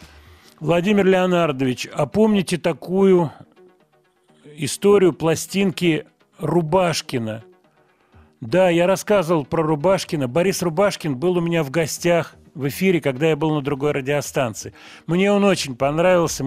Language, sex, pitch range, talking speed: Russian, male, 130-175 Hz, 115 wpm